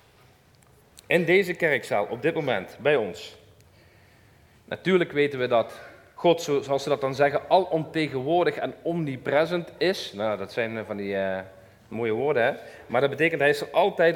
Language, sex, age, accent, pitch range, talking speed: Dutch, male, 40-59, Dutch, 135-180 Hz, 160 wpm